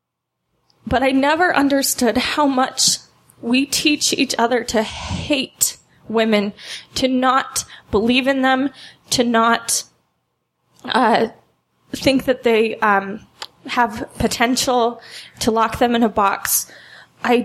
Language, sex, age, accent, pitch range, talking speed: English, female, 20-39, American, 220-255 Hz, 115 wpm